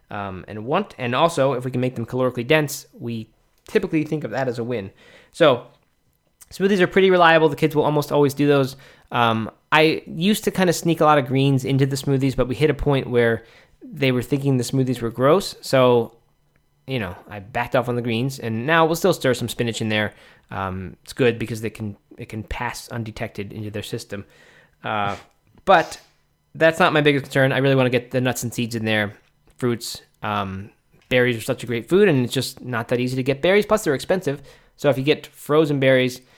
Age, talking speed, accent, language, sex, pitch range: 20-39, 220 wpm, American, English, male, 110-145 Hz